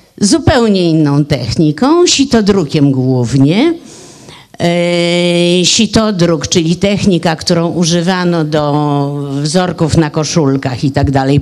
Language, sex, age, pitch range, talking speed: Polish, female, 50-69, 150-210 Hz, 95 wpm